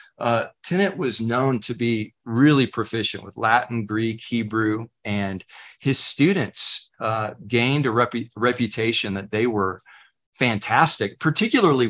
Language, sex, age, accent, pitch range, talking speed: English, male, 40-59, American, 110-130 Hz, 120 wpm